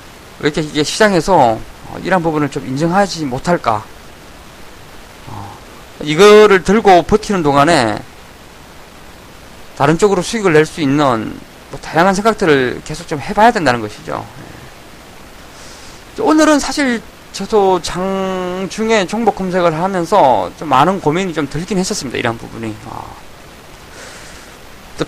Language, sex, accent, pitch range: Korean, male, native, 130-185 Hz